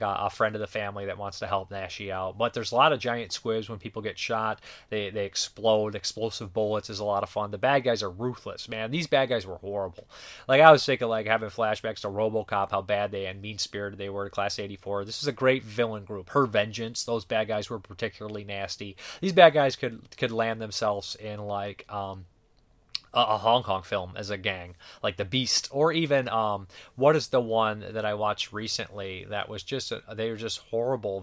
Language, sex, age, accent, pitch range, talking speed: English, male, 20-39, American, 100-115 Hz, 220 wpm